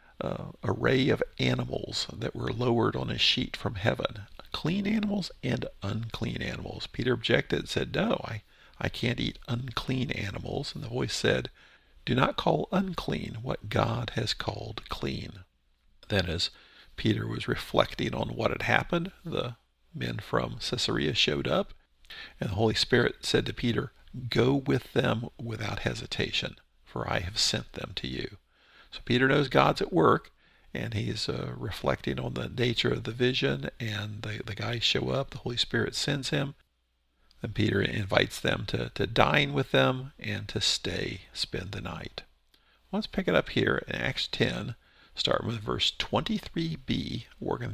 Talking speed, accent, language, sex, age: 165 wpm, American, English, male, 50-69